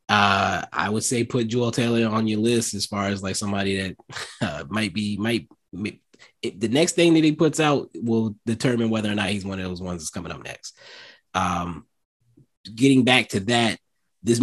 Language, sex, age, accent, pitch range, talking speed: English, male, 20-39, American, 100-125 Hz, 195 wpm